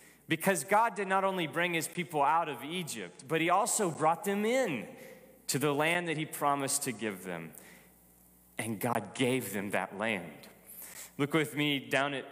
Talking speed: 180 wpm